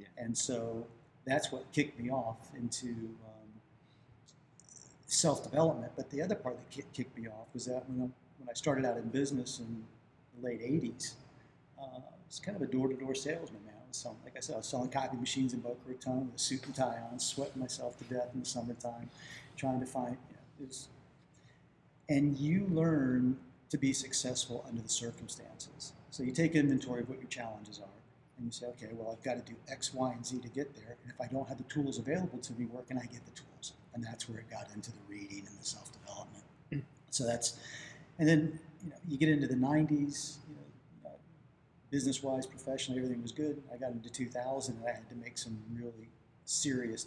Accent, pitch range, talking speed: American, 120-140 Hz, 200 wpm